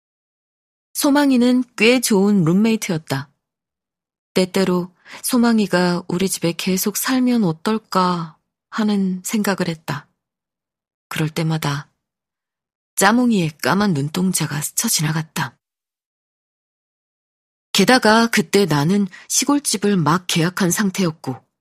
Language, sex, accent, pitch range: Korean, female, native, 155-215 Hz